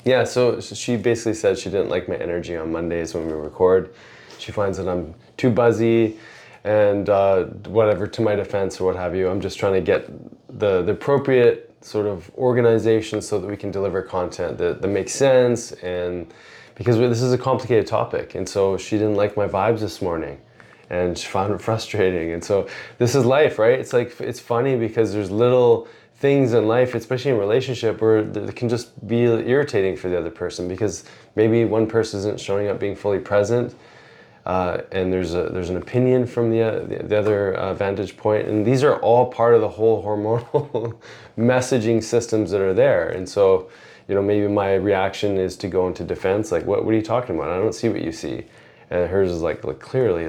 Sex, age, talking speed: male, 20-39, 205 wpm